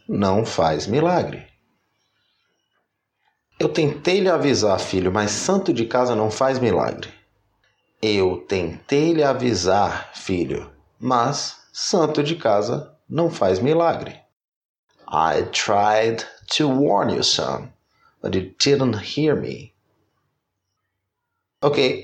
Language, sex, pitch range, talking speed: English, male, 95-140 Hz, 105 wpm